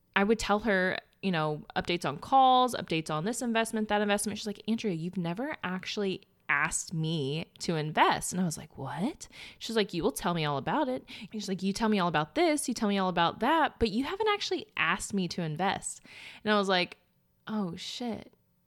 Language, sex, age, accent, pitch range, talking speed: English, female, 20-39, American, 170-215 Hz, 220 wpm